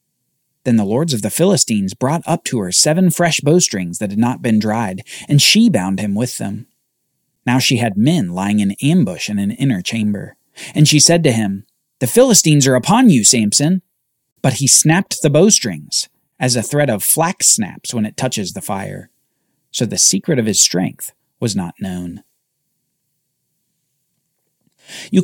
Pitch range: 115-185 Hz